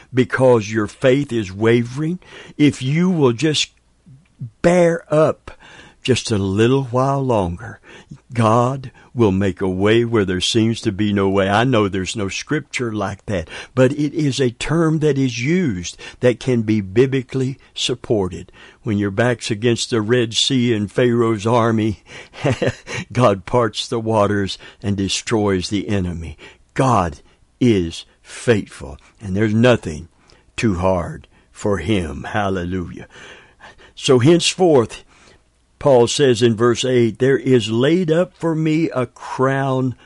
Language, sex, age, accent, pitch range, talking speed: English, male, 60-79, American, 105-140 Hz, 140 wpm